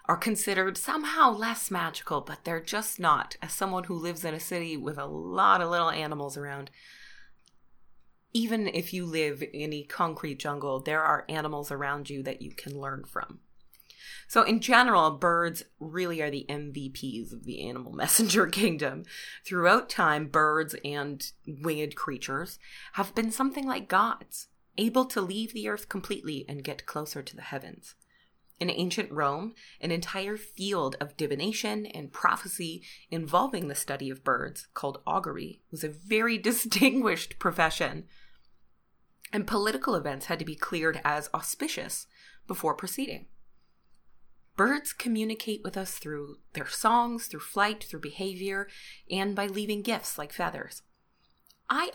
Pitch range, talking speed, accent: 150-210 Hz, 150 wpm, American